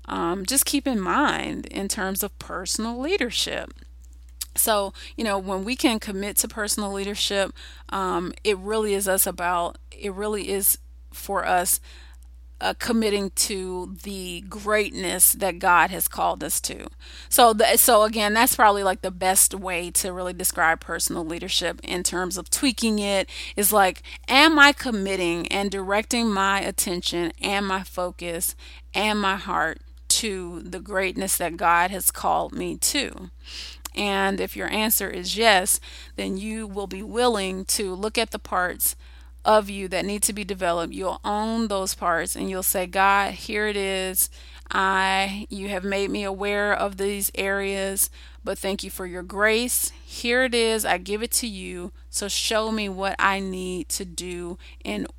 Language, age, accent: English, 30-49, American